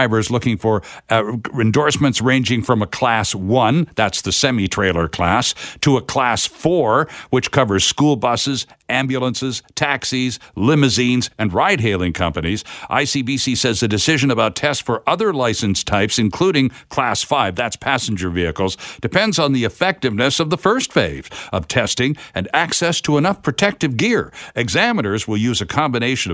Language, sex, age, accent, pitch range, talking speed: English, male, 60-79, American, 105-140 Hz, 145 wpm